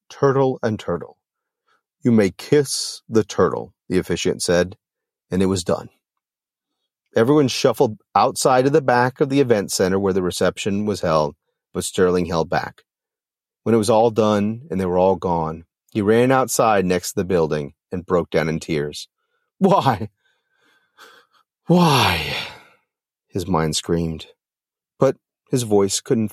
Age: 40-59